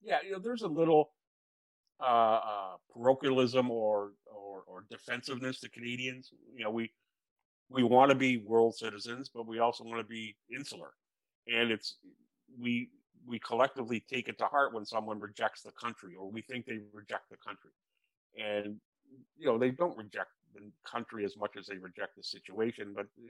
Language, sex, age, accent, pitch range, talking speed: English, male, 50-69, American, 110-135 Hz, 180 wpm